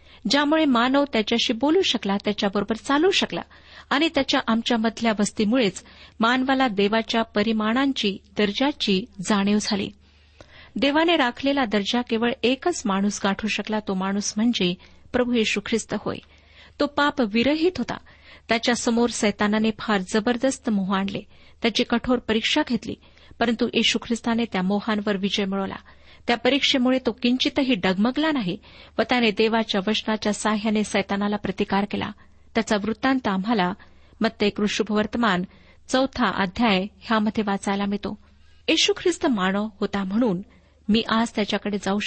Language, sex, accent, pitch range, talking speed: Marathi, female, native, 205-250 Hz, 120 wpm